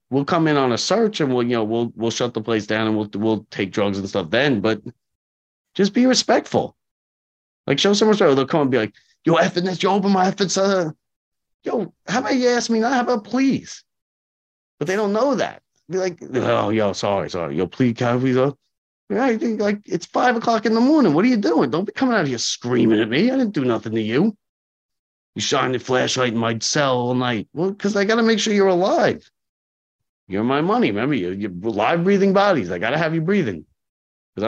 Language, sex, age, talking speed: English, male, 30-49, 230 wpm